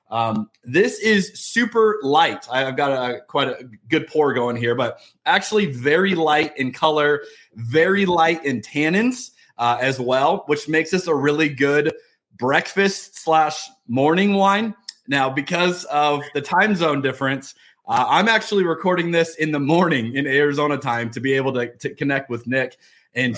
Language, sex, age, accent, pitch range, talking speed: English, male, 30-49, American, 135-175 Hz, 160 wpm